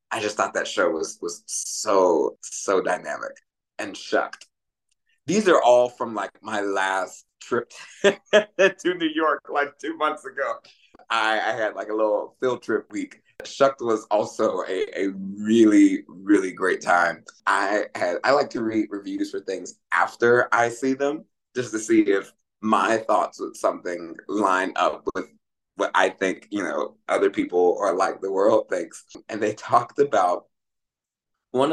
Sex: male